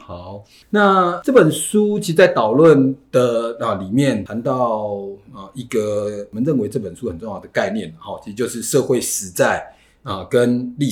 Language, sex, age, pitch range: Chinese, male, 30-49, 105-165 Hz